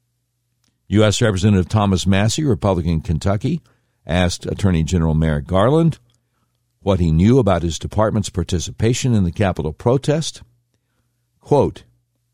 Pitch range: 90-120 Hz